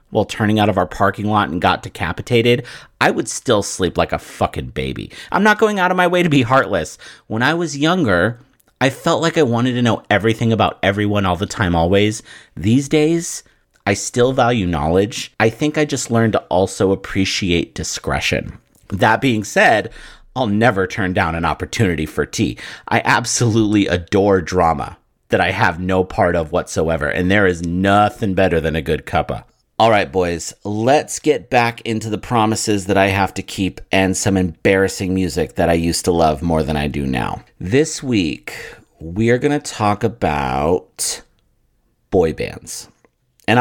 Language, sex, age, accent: English, male, 40-59, American